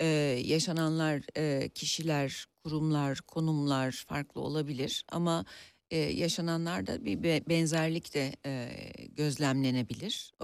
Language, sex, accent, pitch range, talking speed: Turkish, female, native, 130-165 Hz, 75 wpm